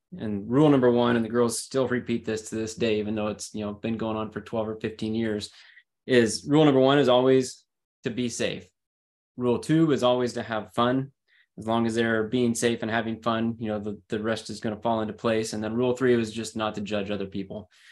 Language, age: English, 20-39